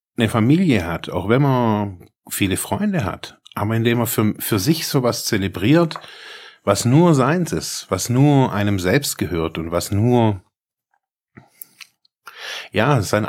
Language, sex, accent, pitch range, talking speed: German, male, German, 100-130 Hz, 140 wpm